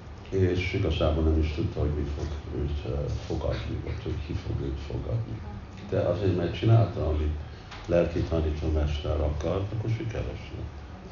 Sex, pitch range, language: male, 80-100 Hz, Hungarian